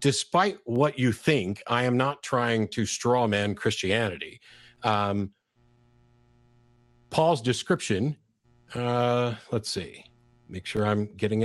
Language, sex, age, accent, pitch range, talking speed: English, male, 50-69, American, 105-120 Hz, 115 wpm